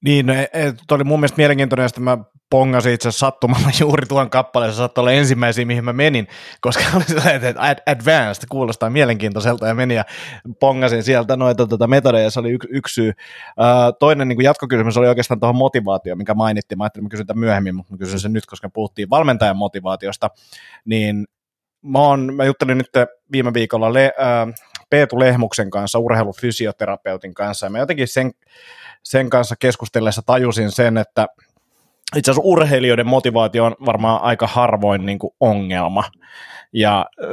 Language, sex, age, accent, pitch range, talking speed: Finnish, male, 30-49, native, 105-130 Hz, 165 wpm